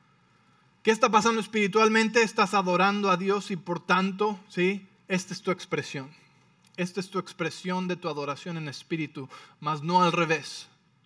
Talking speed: 155 wpm